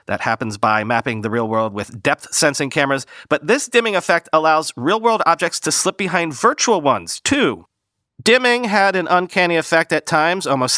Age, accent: 40-59, American